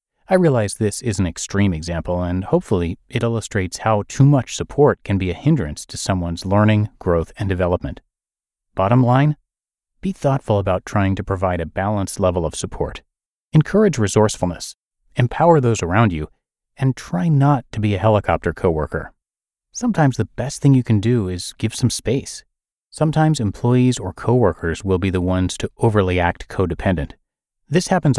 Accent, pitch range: American, 95-130 Hz